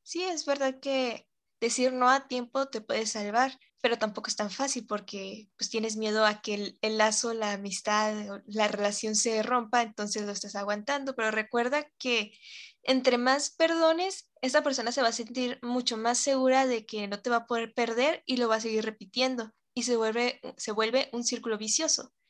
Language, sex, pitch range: English, female, 215-260 Hz